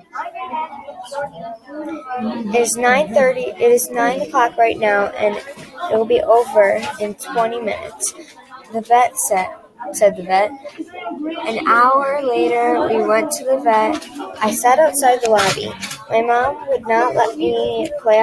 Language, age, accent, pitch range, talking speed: English, 20-39, American, 215-275 Hz, 145 wpm